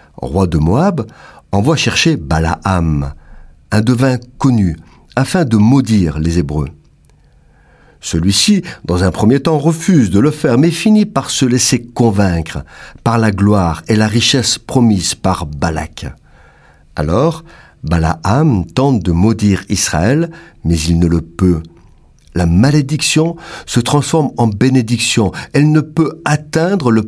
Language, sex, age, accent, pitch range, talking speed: French, male, 50-69, French, 85-140 Hz, 135 wpm